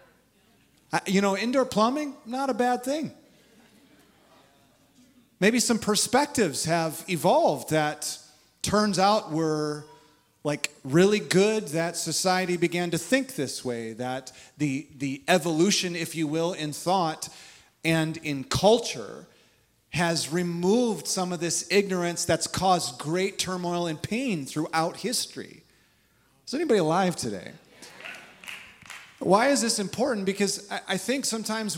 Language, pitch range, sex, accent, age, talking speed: English, 160-215 Hz, male, American, 30-49, 125 wpm